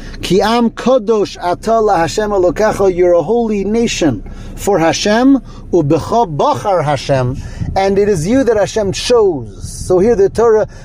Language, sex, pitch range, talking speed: English, male, 145-215 Hz, 120 wpm